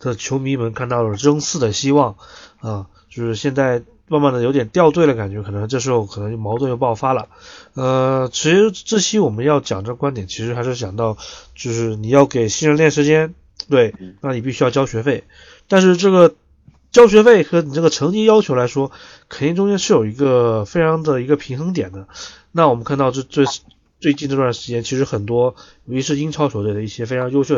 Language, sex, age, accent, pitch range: Chinese, male, 20-39, native, 115-150 Hz